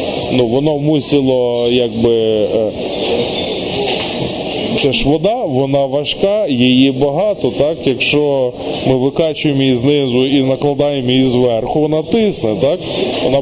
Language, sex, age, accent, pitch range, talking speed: Ukrainian, male, 20-39, native, 125-150 Hz, 110 wpm